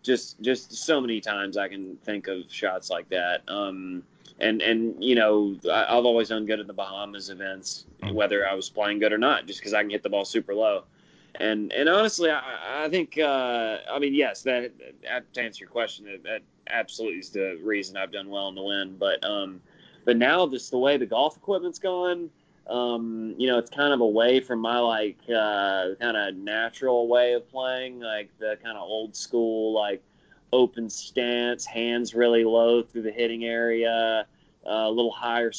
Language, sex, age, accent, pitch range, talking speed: English, male, 20-39, American, 105-120 Hz, 200 wpm